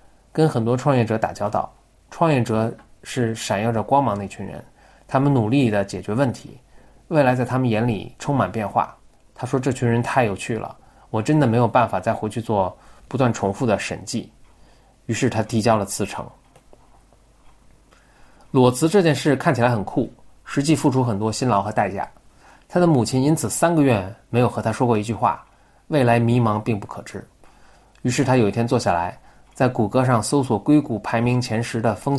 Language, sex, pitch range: Chinese, male, 105-130 Hz